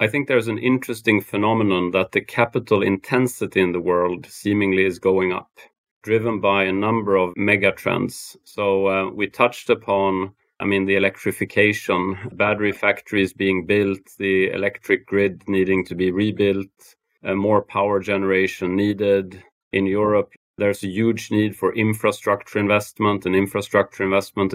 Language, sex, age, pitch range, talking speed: English, male, 30-49, 95-105 Hz, 150 wpm